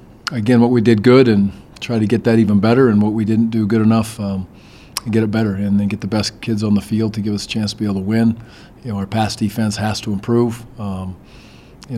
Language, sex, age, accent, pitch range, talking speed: English, male, 40-59, American, 100-115 Hz, 265 wpm